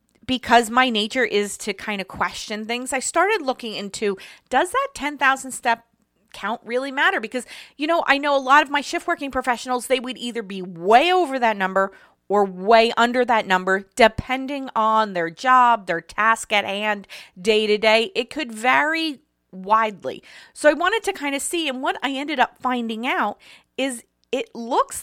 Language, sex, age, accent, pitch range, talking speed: English, female, 30-49, American, 210-285 Hz, 185 wpm